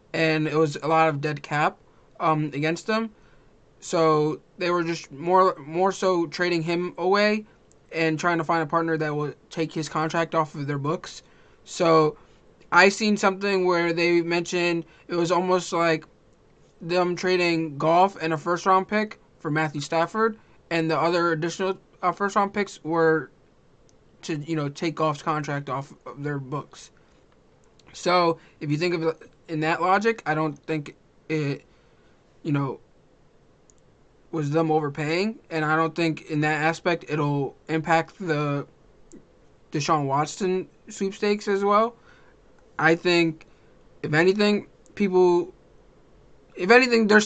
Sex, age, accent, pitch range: male, 20-39, American, 155-180 Hz